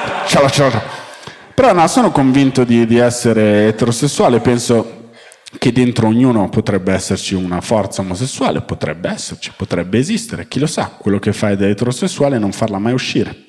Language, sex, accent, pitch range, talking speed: Italian, male, native, 105-140 Hz, 155 wpm